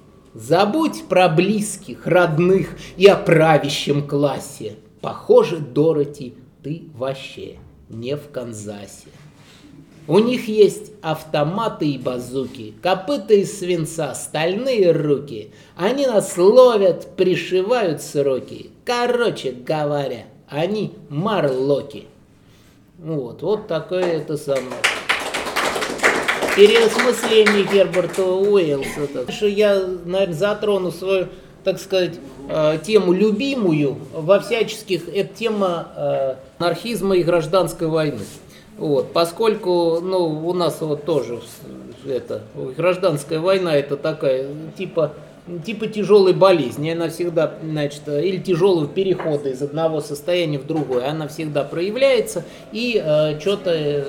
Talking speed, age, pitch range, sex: 100 wpm, 20-39, 150-200 Hz, male